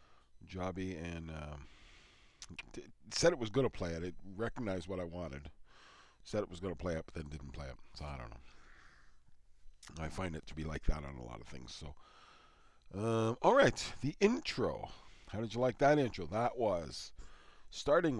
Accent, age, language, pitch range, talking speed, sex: American, 40-59, English, 75-105 Hz, 195 wpm, male